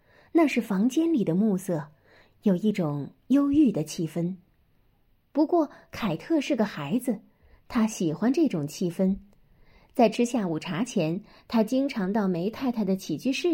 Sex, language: female, Chinese